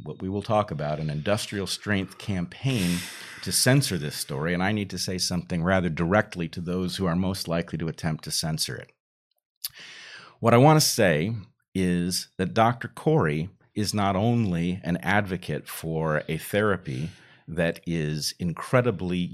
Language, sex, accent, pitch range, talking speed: English, male, American, 85-105 Hz, 160 wpm